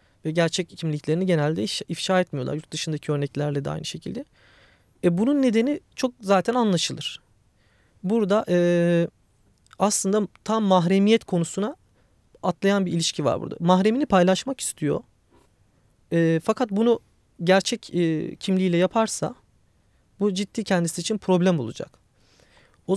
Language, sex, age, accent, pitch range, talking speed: Turkish, male, 30-49, native, 155-195 Hz, 120 wpm